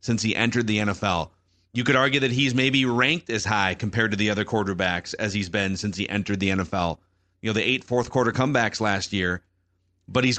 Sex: male